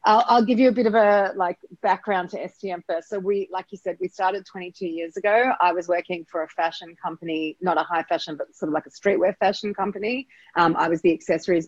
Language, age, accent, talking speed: English, 30-49, Australian, 240 wpm